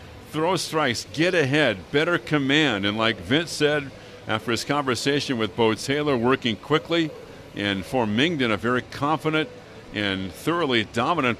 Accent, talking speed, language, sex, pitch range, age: American, 140 wpm, English, male, 105-145 Hz, 50-69